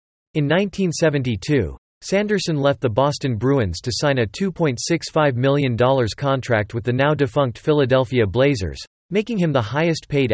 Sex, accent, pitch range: male, American, 115-155 Hz